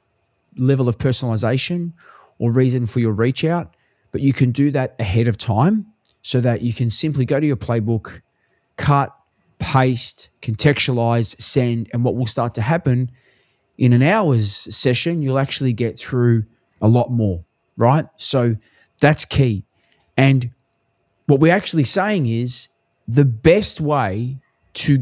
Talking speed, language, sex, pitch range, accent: 145 wpm, English, male, 115-135 Hz, Australian